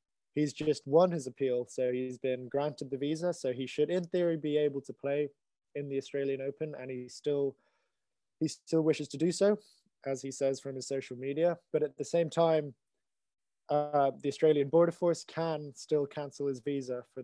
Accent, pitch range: British, 130-155 Hz